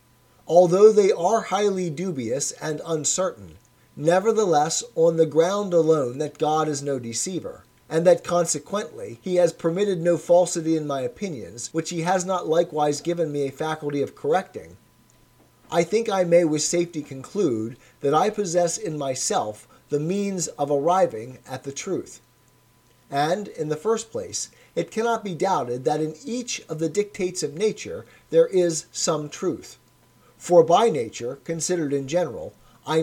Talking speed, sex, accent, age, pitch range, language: 155 wpm, male, American, 40-59, 140-180 Hz, English